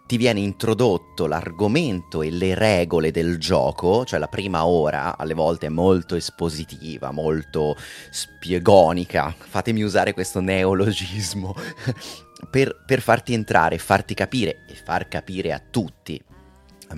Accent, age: native, 30-49